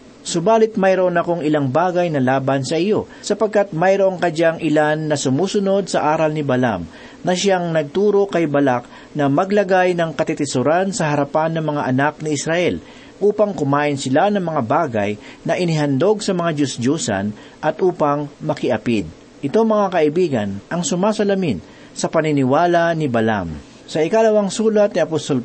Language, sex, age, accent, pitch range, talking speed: Filipino, male, 40-59, native, 140-185 Hz, 150 wpm